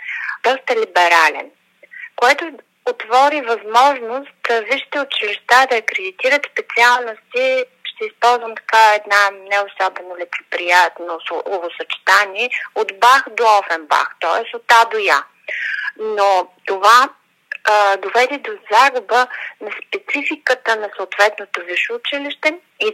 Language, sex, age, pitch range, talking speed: Bulgarian, female, 30-49, 205-310 Hz, 105 wpm